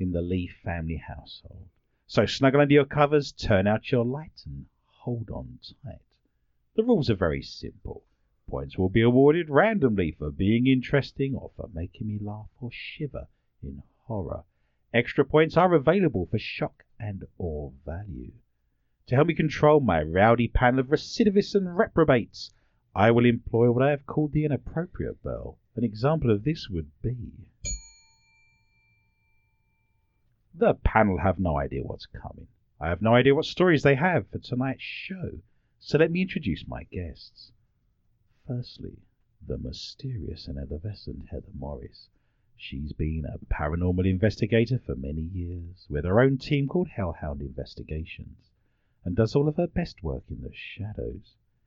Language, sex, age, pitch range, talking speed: English, male, 50-69, 90-130 Hz, 155 wpm